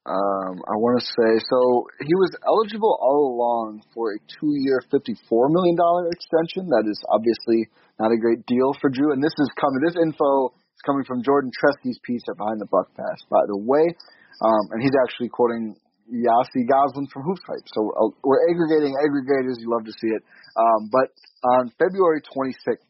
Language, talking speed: English, 190 wpm